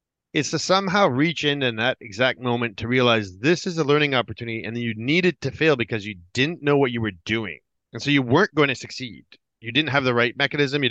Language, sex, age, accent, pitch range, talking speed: English, male, 30-49, American, 115-145 Hz, 240 wpm